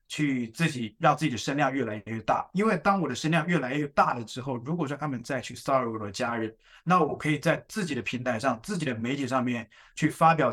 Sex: male